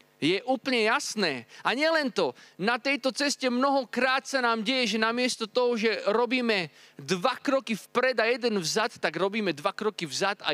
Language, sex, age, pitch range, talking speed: Slovak, male, 30-49, 170-245 Hz, 170 wpm